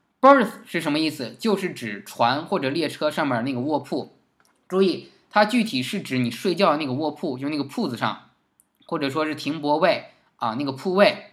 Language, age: Chinese, 20-39